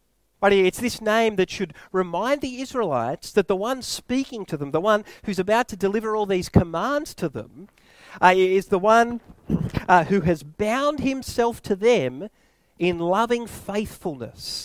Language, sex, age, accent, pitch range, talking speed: English, male, 40-59, Australian, 185-255 Hz, 160 wpm